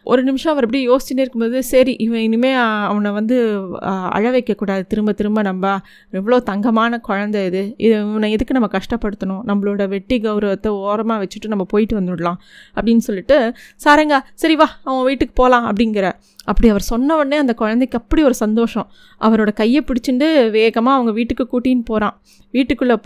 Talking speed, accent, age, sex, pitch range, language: 155 wpm, native, 20-39, female, 220-260 Hz, Tamil